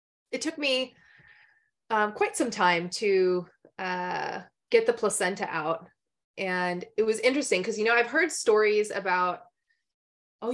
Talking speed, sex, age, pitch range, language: 140 wpm, female, 20-39, 180-245 Hz, English